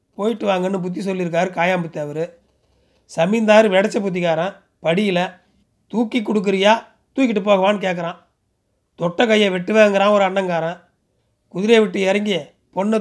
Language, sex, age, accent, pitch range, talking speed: Tamil, male, 30-49, native, 175-210 Hz, 110 wpm